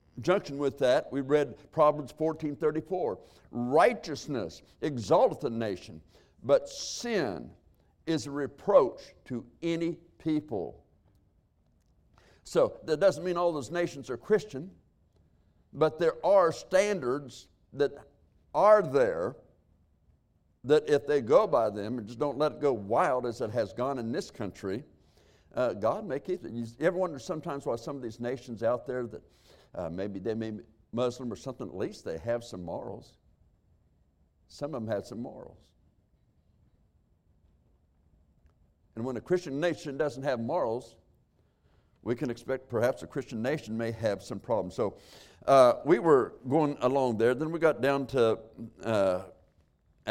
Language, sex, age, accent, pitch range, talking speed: English, male, 60-79, American, 105-155 Hz, 150 wpm